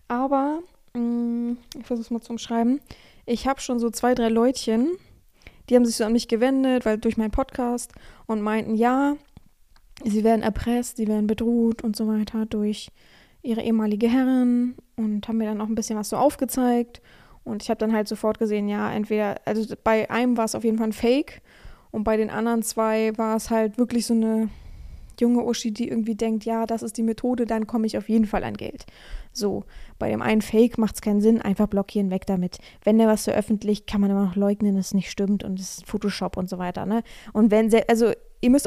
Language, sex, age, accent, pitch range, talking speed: German, female, 20-39, German, 215-240 Hz, 210 wpm